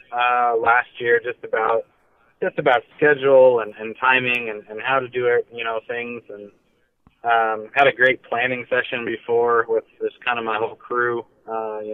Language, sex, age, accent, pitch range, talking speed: English, male, 20-39, American, 110-125 Hz, 185 wpm